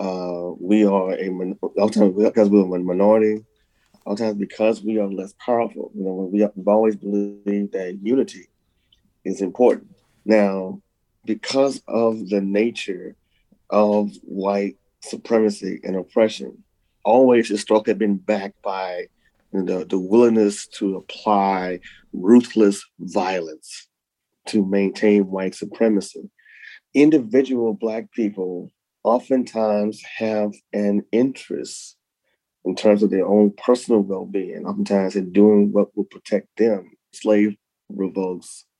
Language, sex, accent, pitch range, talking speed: English, male, American, 95-110 Hz, 120 wpm